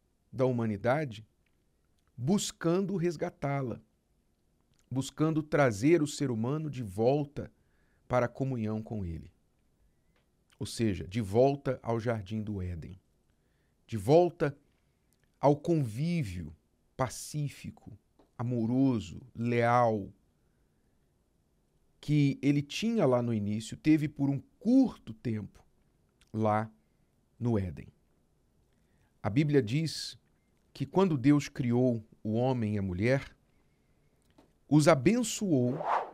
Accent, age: Brazilian, 50-69